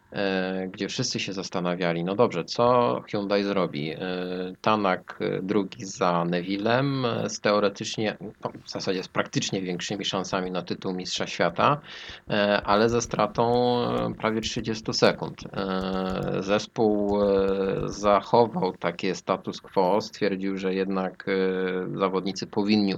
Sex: male